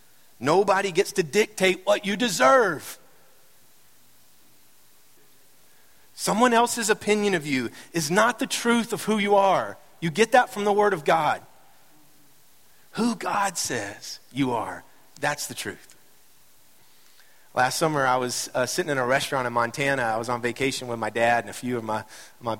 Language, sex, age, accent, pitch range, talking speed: English, male, 40-59, American, 115-150 Hz, 160 wpm